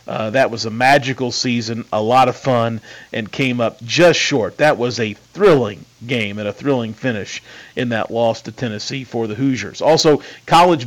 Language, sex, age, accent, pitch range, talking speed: English, male, 40-59, American, 120-150 Hz, 190 wpm